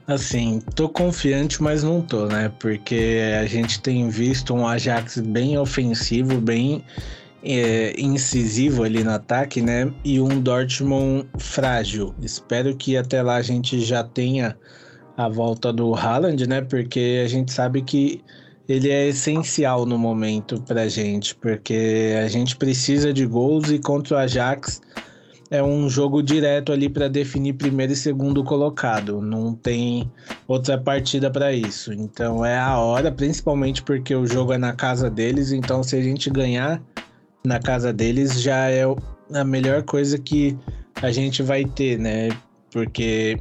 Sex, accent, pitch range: male, Brazilian, 115-140 Hz